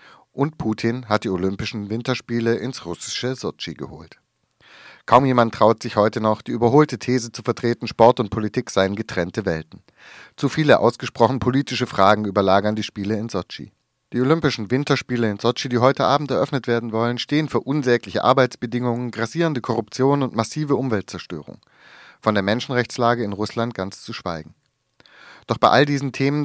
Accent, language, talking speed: German, German, 160 wpm